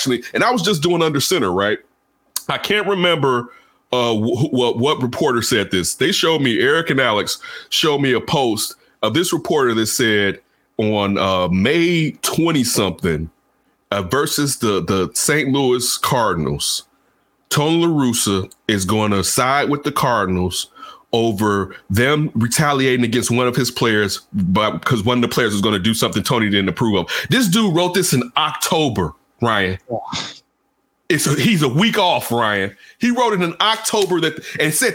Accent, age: American, 30-49